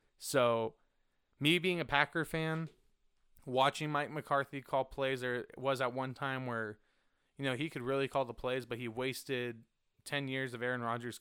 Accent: American